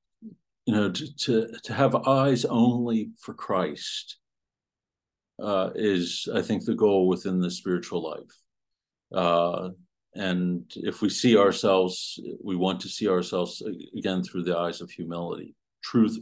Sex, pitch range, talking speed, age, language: male, 90-125 Hz, 135 wpm, 50-69, English